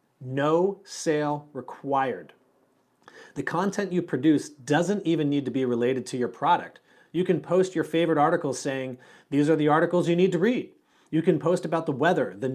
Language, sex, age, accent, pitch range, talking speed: English, male, 30-49, American, 130-175 Hz, 180 wpm